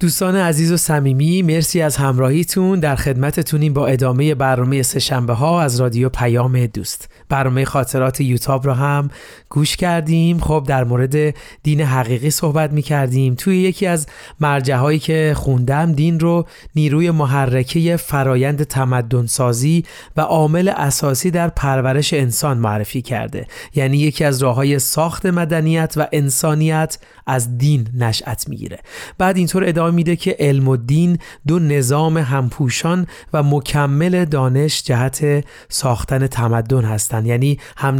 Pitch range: 130-160 Hz